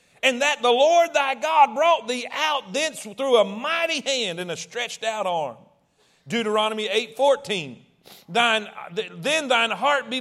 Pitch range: 250-320 Hz